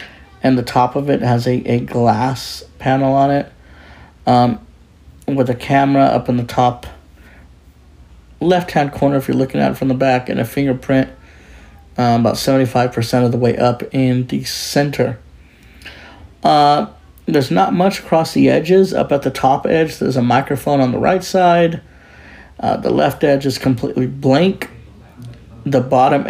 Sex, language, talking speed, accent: male, English, 160 wpm, American